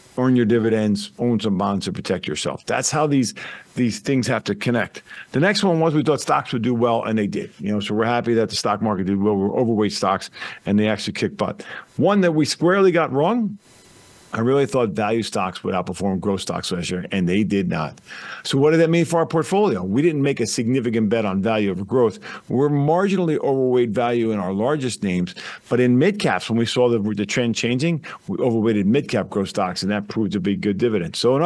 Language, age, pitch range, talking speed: English, 50-69, 105-150 Hz, 230 wpm